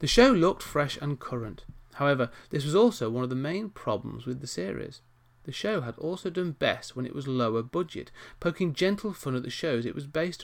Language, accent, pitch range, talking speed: English, British, 120-165 Hz, 220 wpm